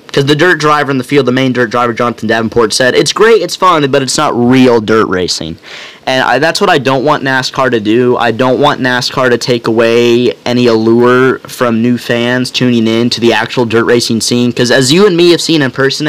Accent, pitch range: American, 115-145 Hz